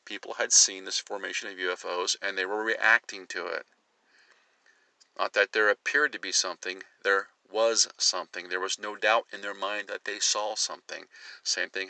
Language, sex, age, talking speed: English, male, 50-69, 180 wpm